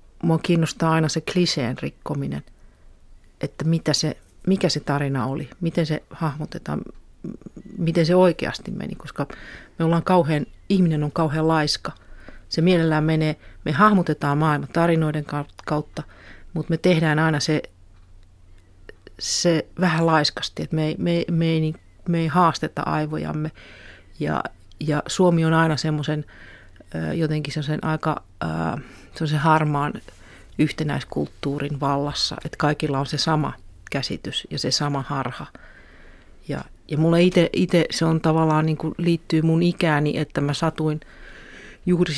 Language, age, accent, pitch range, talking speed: Finnish, 40-59, native, 140-160 Hz, 130 wpm